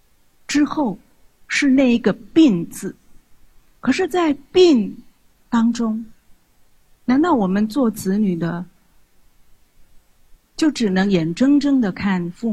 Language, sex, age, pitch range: Chinese, female, 50-69, 180-245 Hz